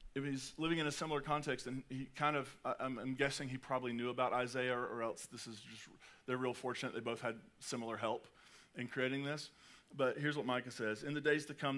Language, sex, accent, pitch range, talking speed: English, male, American, 125-150 Hz, 225 wpm